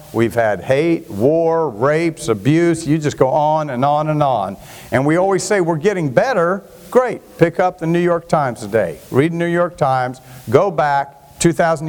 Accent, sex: American, male